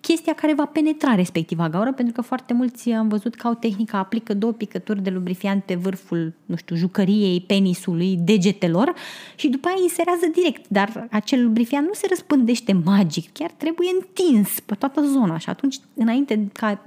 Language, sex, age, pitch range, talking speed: Romanian, female, 20-39, 205-270 Hz, 175 wpm